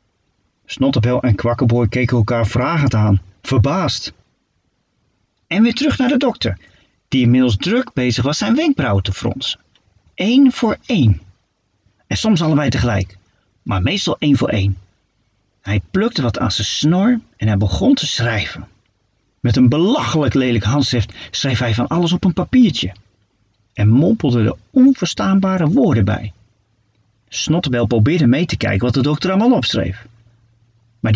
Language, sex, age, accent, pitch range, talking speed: Dutch, male, 40-59, Dutch, 105-175 Hz, 145 wpm